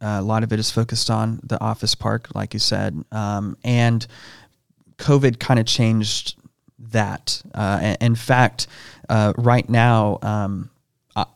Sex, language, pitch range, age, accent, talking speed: male, English, 105-120 Hz, 30-49, American, 160 wpm